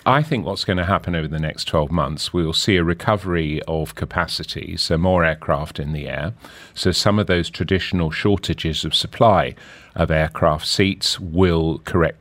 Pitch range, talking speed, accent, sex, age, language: 85-100 Hz, 180 wpm, British, male, 40-59, English